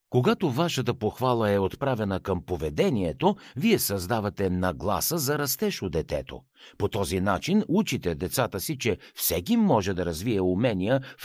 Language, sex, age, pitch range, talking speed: Bulgarian, male, 60-79, 90-150 Hz, 145 wpm